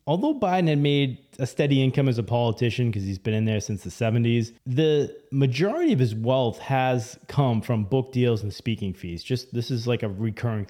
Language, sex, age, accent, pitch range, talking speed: English, male, 30-49, American, 105-125 Hz, 210 wpm